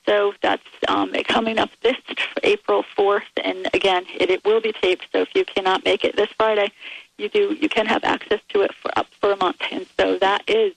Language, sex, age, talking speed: English, female, 40-59, 230 wpm